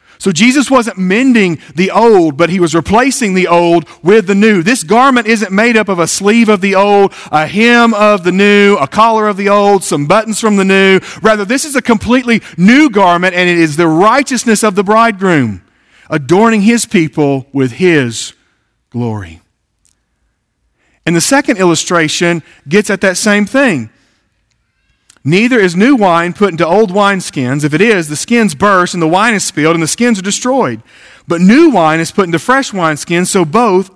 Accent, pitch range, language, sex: American, 165-230 Hz, English, male